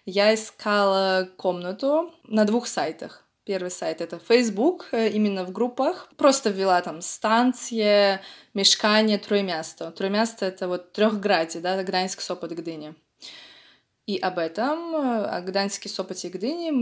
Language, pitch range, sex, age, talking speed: Polish, 185-225 Hz, female, 20-39, 130 wpm